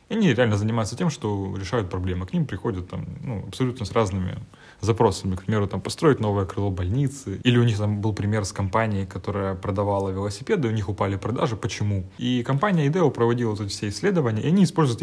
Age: 20-39